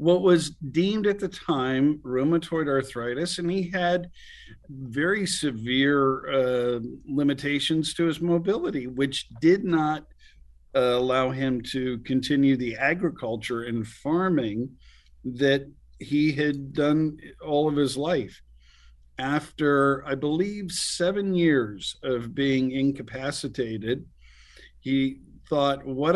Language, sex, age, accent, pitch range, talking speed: English, male, 50-69, American, 125-165 Hz, 110 wpm